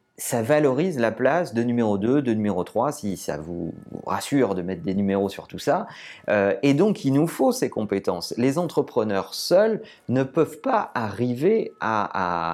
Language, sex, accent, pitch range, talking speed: French, male, French, 100-140 Hz, 175 wpm